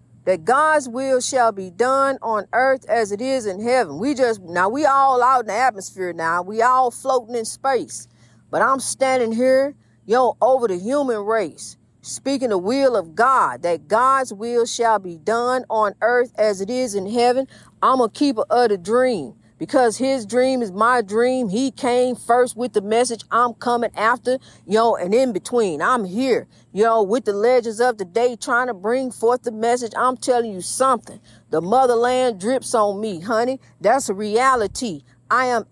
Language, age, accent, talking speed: English, 40-59, American, 190 wpm